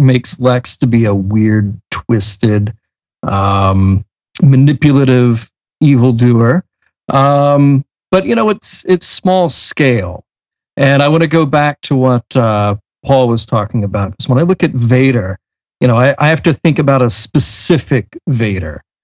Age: 40-59